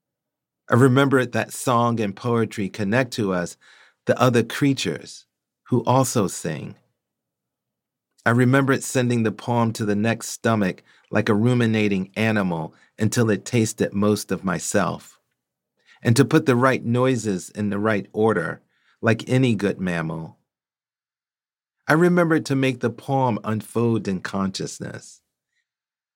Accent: American